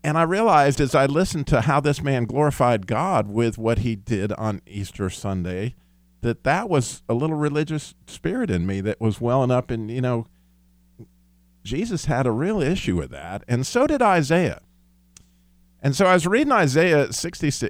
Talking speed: 180 wpm